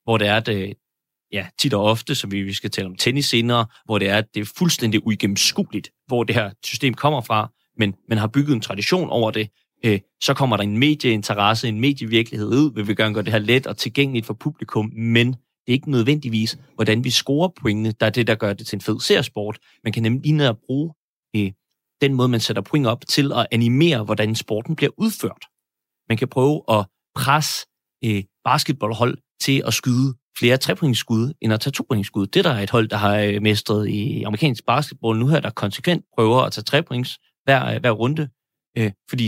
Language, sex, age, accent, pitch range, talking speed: Danish, male, 30-49, native, 110-135 Hz, 200 wpm